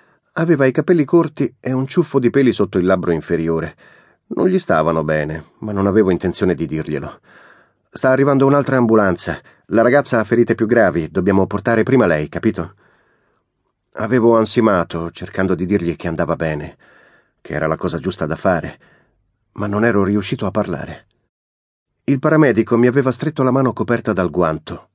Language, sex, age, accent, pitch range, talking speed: Italian, male, 40-59, native, 85-130 Hz, 165 wpm